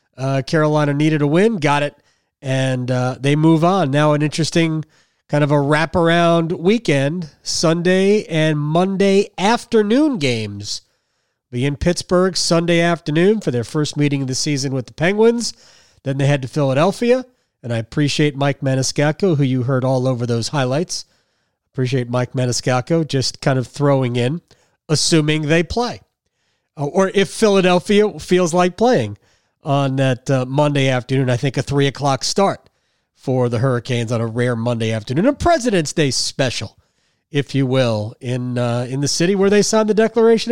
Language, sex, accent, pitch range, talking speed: English, male, American, 125-170 Hz, 165 wpm